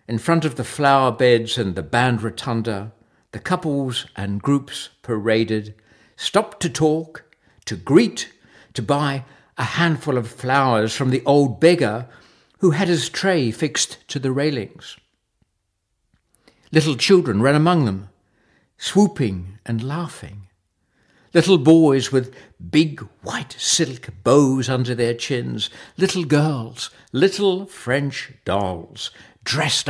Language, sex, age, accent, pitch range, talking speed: English, male, 60-79, British, 115-155 Hz, 125 wpm